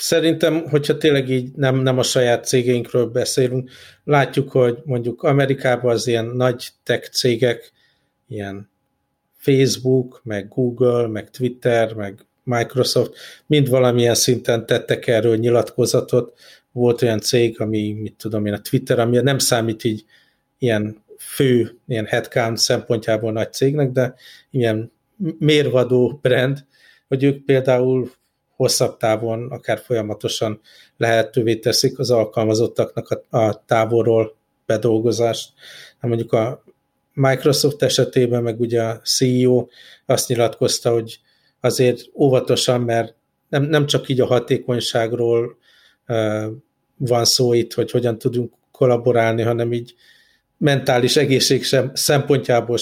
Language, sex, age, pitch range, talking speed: Hungarian, male, 50-69, 115-130 Hz, 115 wpm